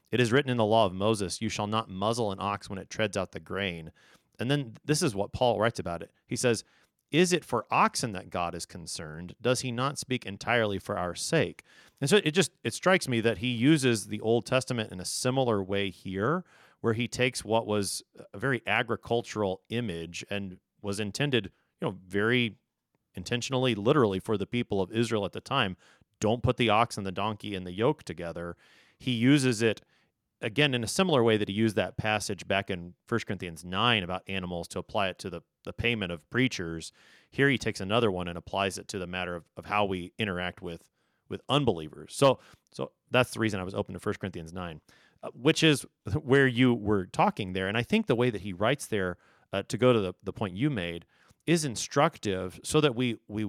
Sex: male